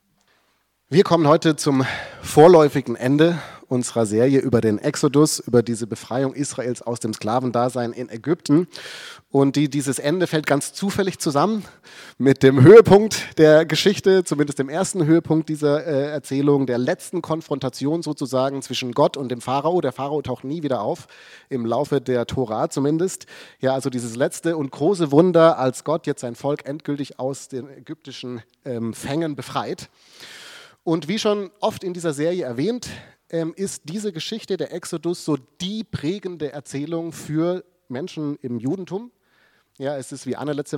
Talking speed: 155 wpm